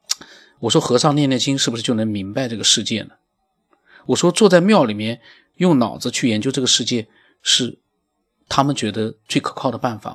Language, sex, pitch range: Chinese, male, 110-150 Hz